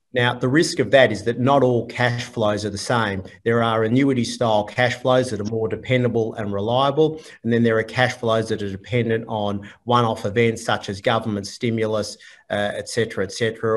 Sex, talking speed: male, 205 wpm